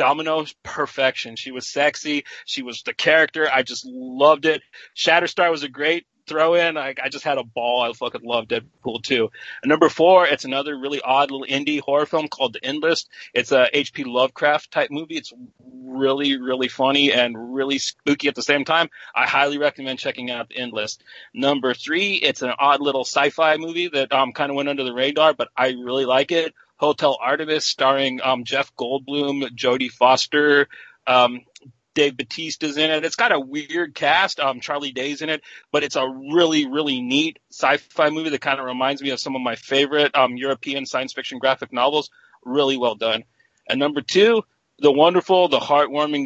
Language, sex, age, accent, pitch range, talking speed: English, male, 30-49, American, 130-155 Hz, 185 wpm